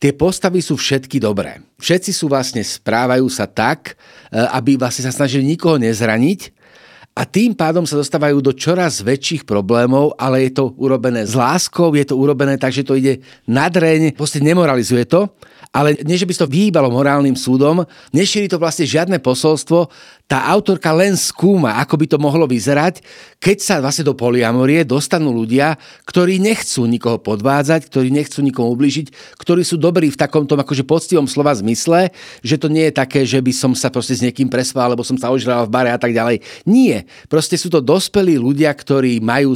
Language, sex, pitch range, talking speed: Slovak, male, 130-160 Hz, 180 wpm